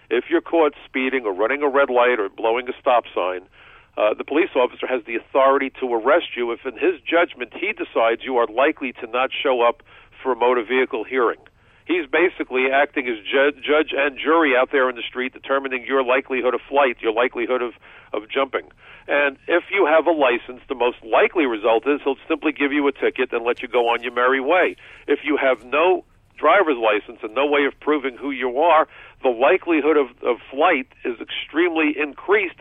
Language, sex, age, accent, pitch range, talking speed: English, male, 50-69, American, 125-150 Hz, 205 wpm